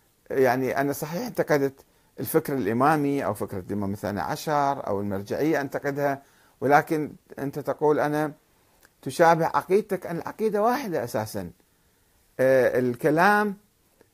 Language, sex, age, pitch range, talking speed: Arabic, male, 50-69, 120-165 Hz, 105 wpm